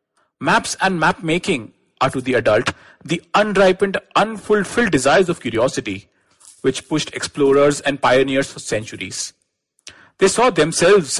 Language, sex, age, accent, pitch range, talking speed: English, male, 40-59, Indian, 130-175 Hz, 125 wpm